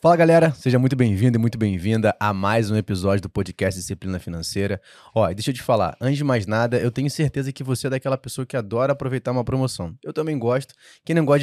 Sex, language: male, Portuguese